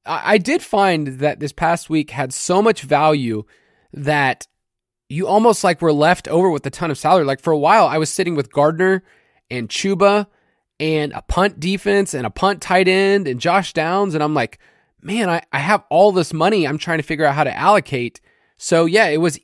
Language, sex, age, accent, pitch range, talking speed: English, male, 20-39, American, 145-190 Hz, 210 wpm